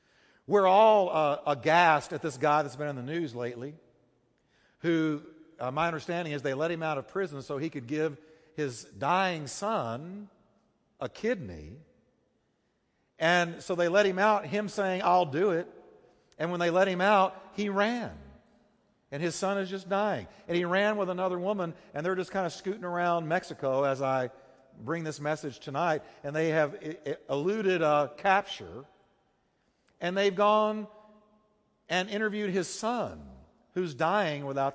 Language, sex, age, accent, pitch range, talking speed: English, male, 50-69, American, 145-195 Hz, 165 wpm